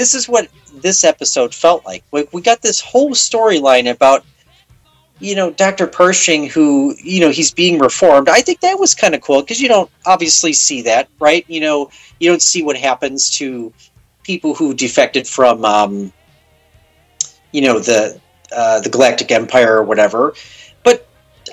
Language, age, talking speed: English, 40-59, 165 wpm